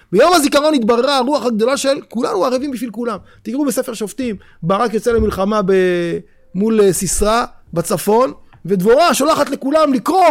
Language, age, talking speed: Hebrew, 30-49, 135 wpm